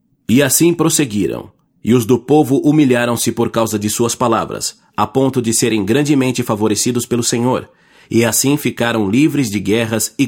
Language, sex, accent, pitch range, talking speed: English, male, Brazilian, 110-140 Hz, 165 wpm